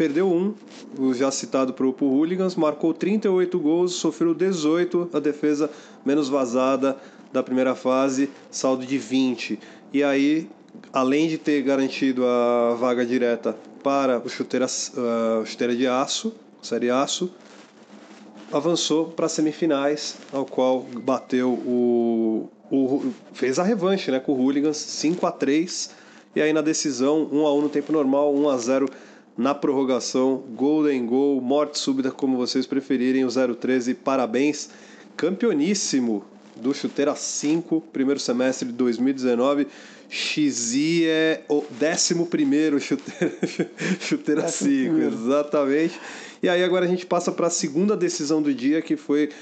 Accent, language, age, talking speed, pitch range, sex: Brazilian, Portuguese, 20-39, 130 wpm, 130-175 Hz, male